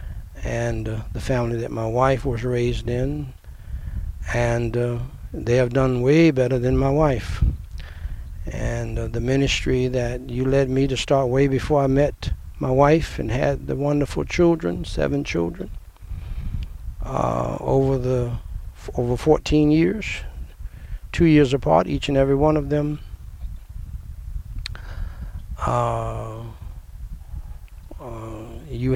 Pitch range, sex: 85-135 Hz, male